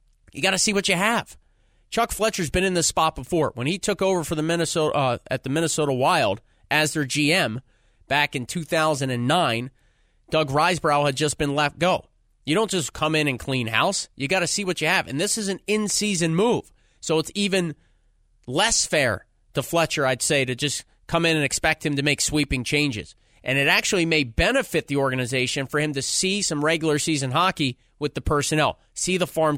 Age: 30-49